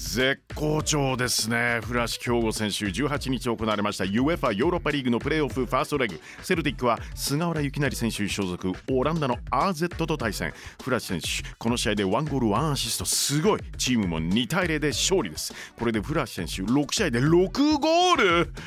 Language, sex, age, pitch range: Japanese, male, 40-59, 110-155 Hz